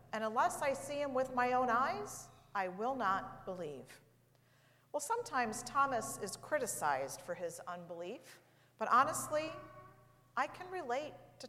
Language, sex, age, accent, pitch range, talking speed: English, female, 50-69, American, 180-255 Hz, 140 wpm